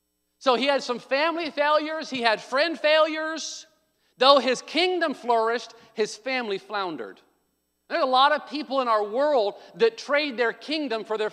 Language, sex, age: English, male, 40-59